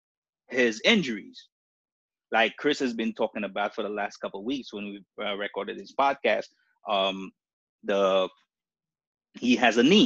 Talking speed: 150 wpm